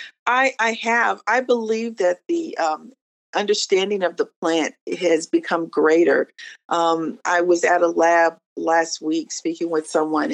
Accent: American